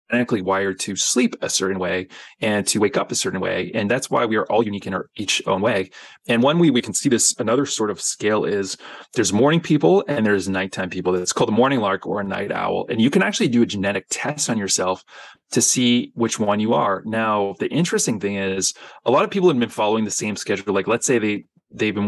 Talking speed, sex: 245 wpm, male